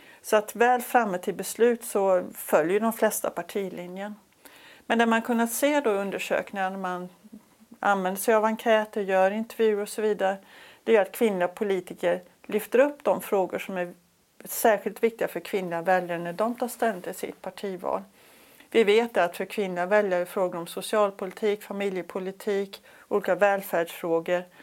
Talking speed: 160 wpm